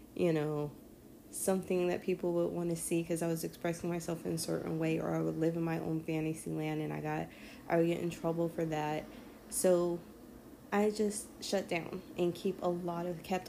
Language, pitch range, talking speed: English, 160-180 Hz, 215 wpm